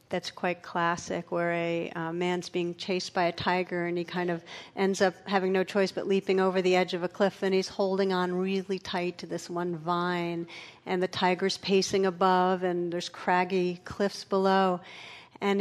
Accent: American